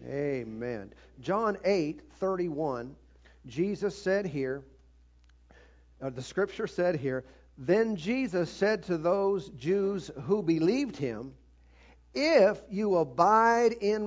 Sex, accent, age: male, American, 50-69